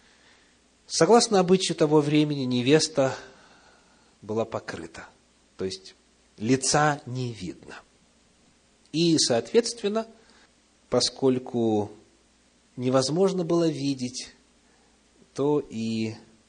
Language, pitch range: Russian, 100-150 Hz